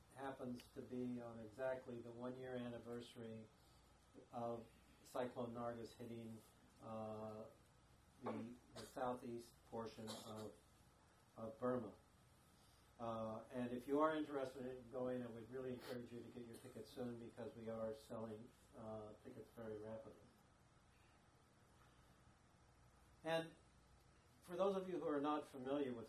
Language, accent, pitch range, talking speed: English, American, 110-130 Hz, 130 wpm